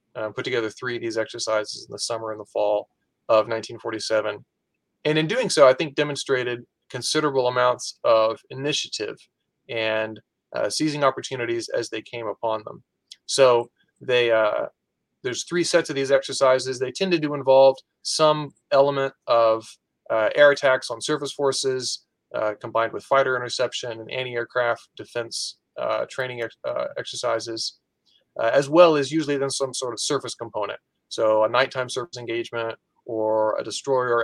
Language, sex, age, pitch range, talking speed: English, male, 30-49, 115-135 Hz, 155 wpm